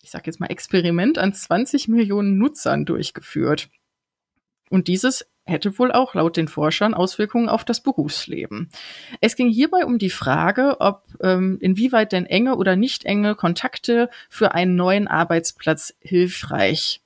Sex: female